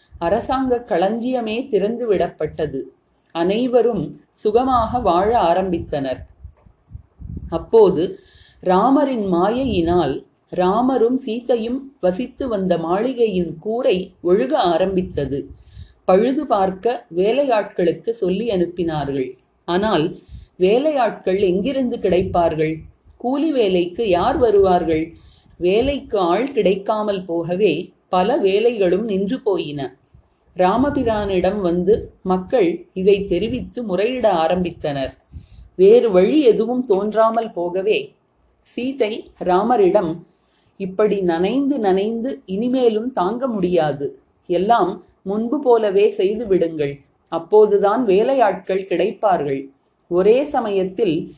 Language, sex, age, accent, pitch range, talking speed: Tamil, female, 30-49, native, 175-235 Hz, 80 wpm